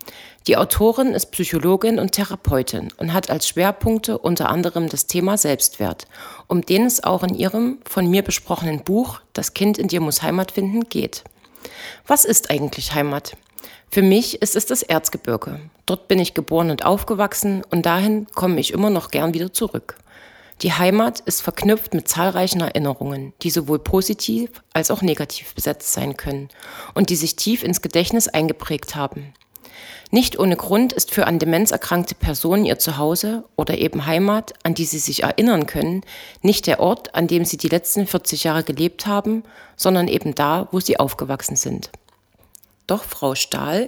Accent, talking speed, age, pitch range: German, 170 wpm, 30-49, 160-205 Hz